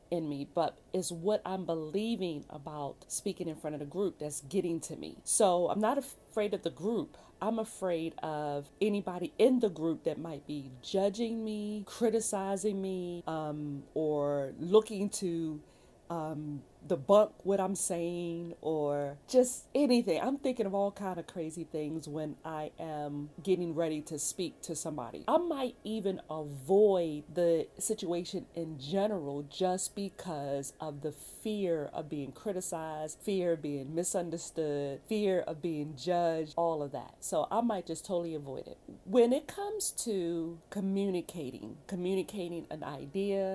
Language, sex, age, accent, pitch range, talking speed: English, female, 40-59, American, 155-200 Hz, 150 wpm